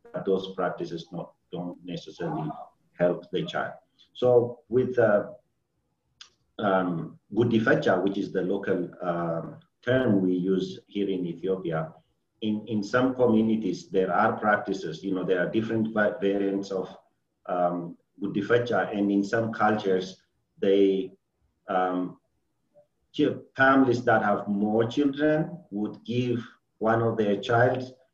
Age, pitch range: 50-69, 95-115 Hz